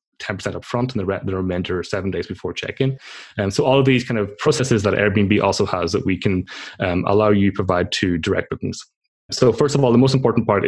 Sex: male